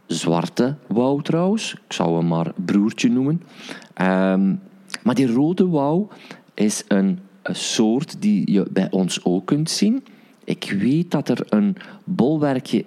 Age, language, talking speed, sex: 40-59, Dutch, 145 wpm, male